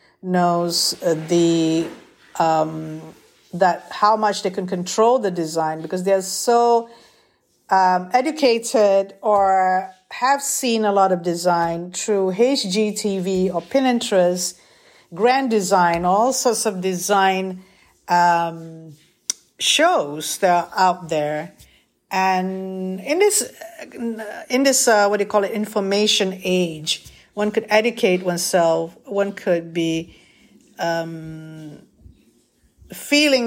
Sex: female